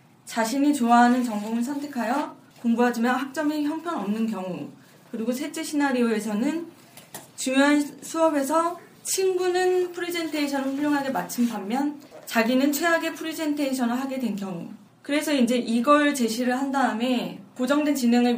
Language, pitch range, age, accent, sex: Korean, 225-285 Hz, 20-39, native, female